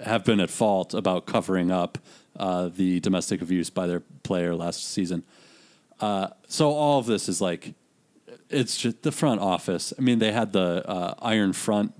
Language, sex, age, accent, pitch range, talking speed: English, male, 30-49, American, 90-110 Hz, 180 wpm